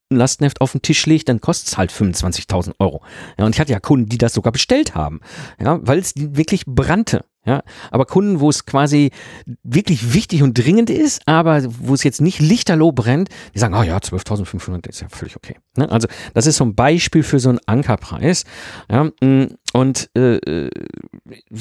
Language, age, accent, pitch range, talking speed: German, 50-69, German, 115-165 Hz, 190 wpm